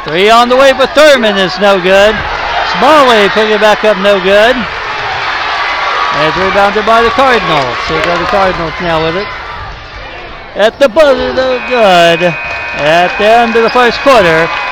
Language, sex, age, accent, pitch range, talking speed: English, male, 60-79, American, 170-225 Hz, 165 wpm